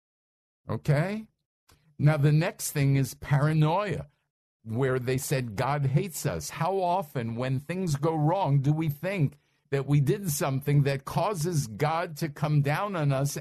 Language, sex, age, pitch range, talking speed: English, male, 50-69, 135-160 Hz, 150 wpm